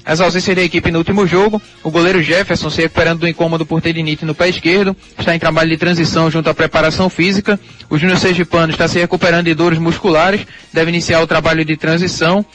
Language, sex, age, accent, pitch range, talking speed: Portuguese, male, 20-39, Brazilian, 160-180 Hz, 205 wpm